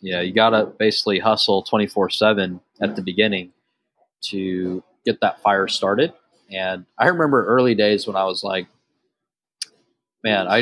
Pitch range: 95-110 Hz